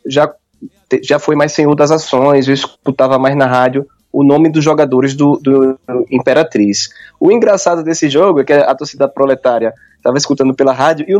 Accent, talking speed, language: Brazilian, 180 wpm, Portuguese